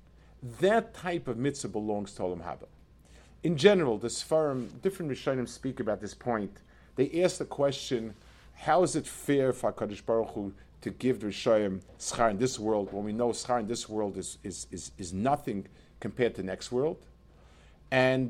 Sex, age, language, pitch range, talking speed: male, 50-69, English, 105-160 Hz, 185 wpm